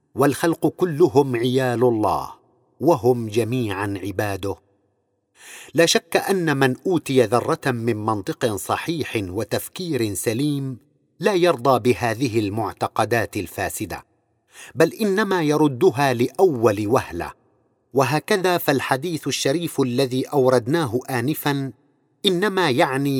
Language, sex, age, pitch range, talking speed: Arabic, male, 50-69, 120-160 Hz, 95 wpm